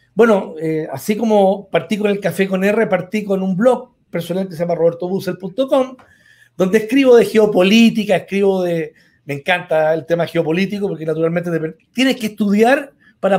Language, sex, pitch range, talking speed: Spanish, male, 175-210 Hz, 165 wpm